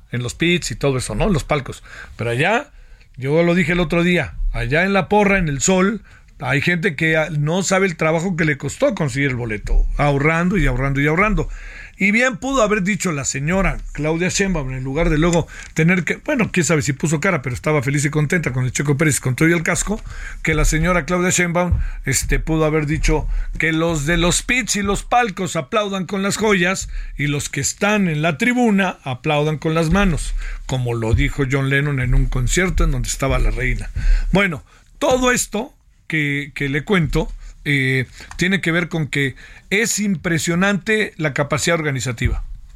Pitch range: 140-185 Hz